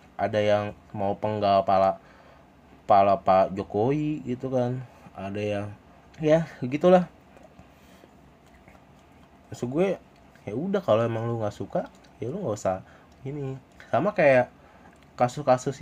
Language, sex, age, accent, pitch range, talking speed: Indonesian, male, 20-39, native, 105-135 Hz, 120 wpm